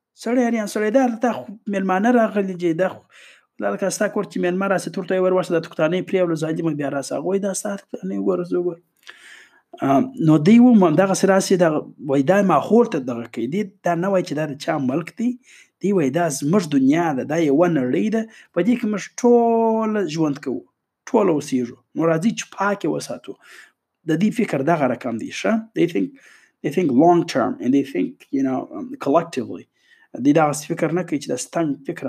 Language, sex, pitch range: Urdu, male, 155-215 Hz